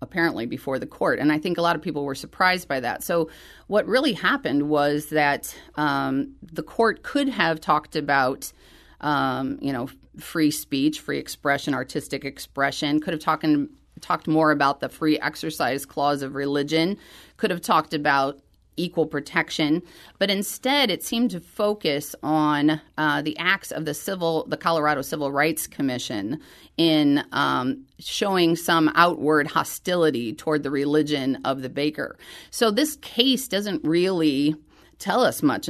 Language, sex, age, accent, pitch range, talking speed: English, female, 30-49, American, 140-175 Hz, 155 wpm